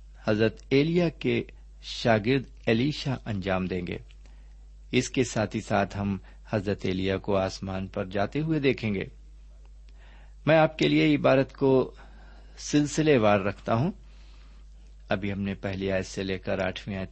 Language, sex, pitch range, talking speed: Urdu, male, 95-125 Hz, 150 wpm